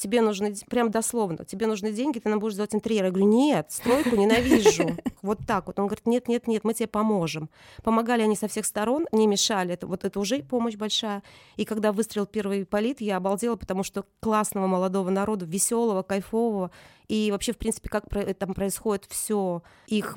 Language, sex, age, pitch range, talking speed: Russian, female, 20-39, 195-225 Hz, 180 wpm